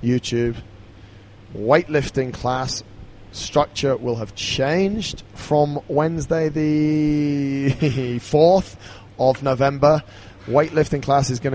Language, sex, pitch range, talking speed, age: English, male, 120-145 Hz, 90 wpm, 20-39